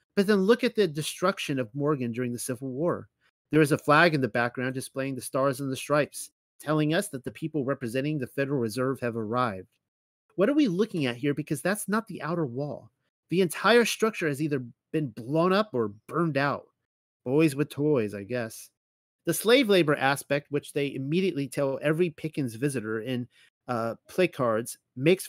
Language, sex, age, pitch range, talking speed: English, male, 30-49, 125-170 Hz, 190 wpm